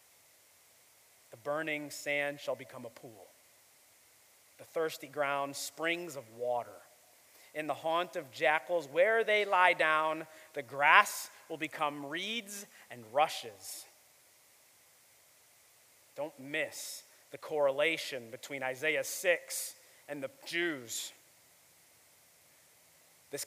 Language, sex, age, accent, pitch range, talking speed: English, male, 30-49, American, 160-235 Hz, 100 wpm